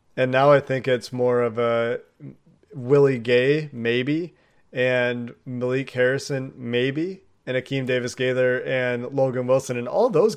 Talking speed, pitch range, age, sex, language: 140 wpm, 125-140 Hz, 30-49, male, English